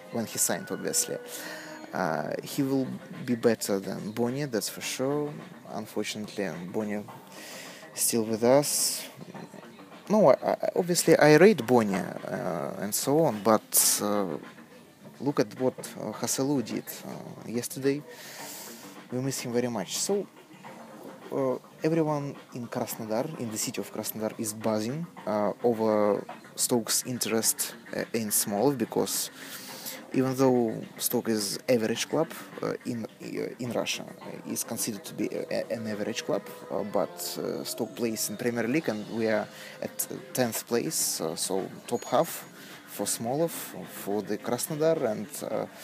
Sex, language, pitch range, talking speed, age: male, English, 110-140 Hz, 145 wpm, 20-39